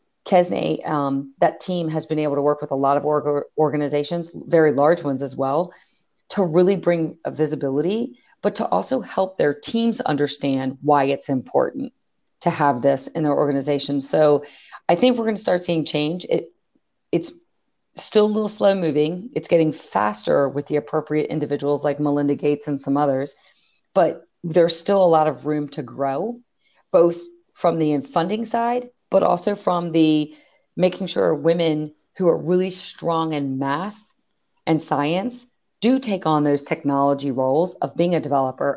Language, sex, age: English, female, 40-59